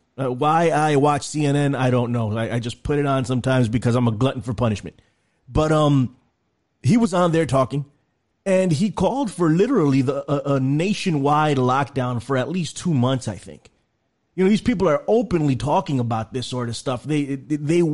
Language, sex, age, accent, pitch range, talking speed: English, male, 30-49, American, 130-175 Hz, 195 wpm